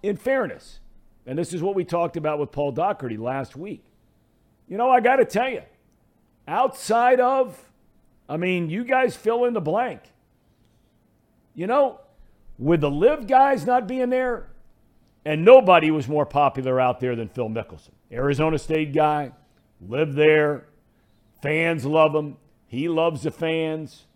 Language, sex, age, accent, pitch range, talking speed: English, male, 50-69, American, 120-180 Hz, 155 wpm